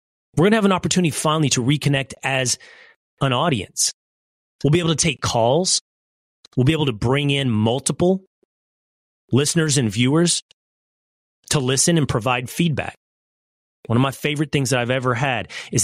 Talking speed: 165 wpm